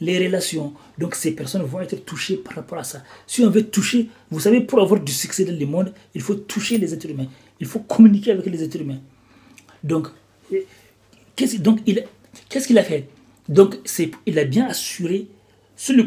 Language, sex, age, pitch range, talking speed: French, male, 40-59, 145-205 Hz, 200 wpm